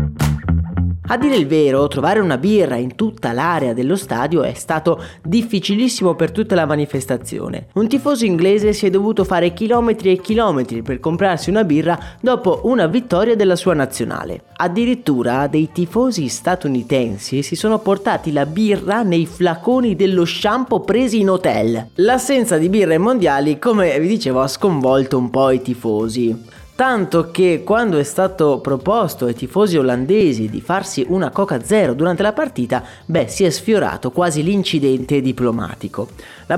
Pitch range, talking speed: 135-210 Hz, 155 wpm